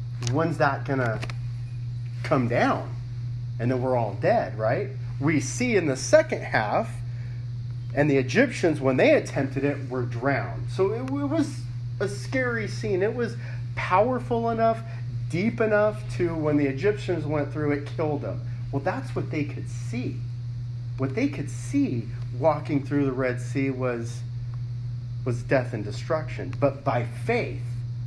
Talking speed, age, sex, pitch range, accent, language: 155 wpm, 40-59, male, 120-135 Hz, American, English